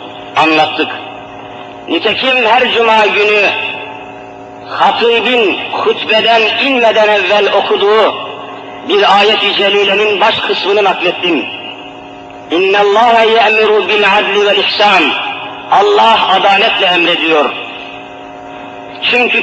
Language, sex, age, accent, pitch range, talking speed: Turkish, male, 50-69, native, 205-235 Hz, 85 wpm